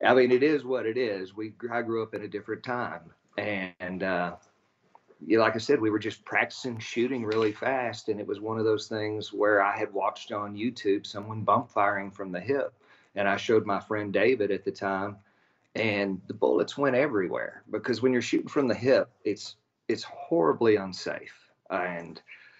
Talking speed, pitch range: 190 wpm, 100-115 Hz